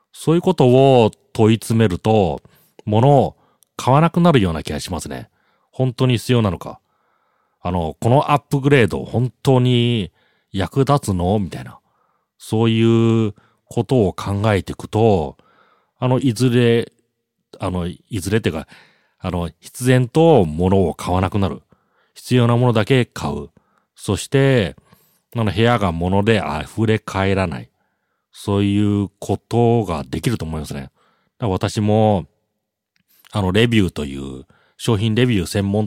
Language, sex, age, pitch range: Japanese, male, 40-59, 95-120 Hz